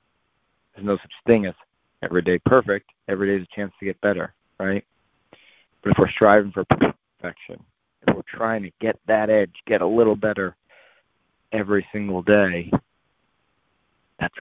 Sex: male